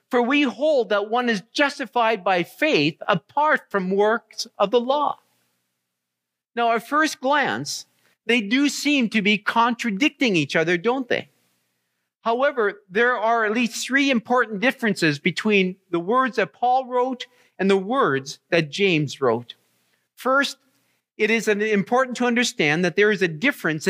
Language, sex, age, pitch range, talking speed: English, male, 50-69, 165-245 Hz, 150 wpm